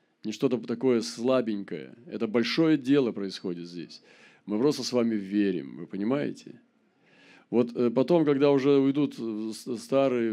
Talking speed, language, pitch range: 130 wpm, Russian, 105-130 Hz